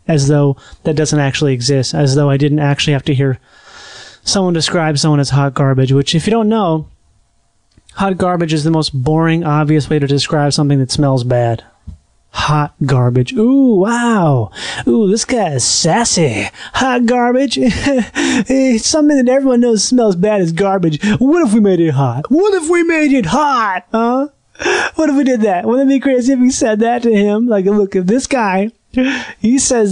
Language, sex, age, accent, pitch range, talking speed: English, male, 30-49, American, 145-230 Hz, 185 wpm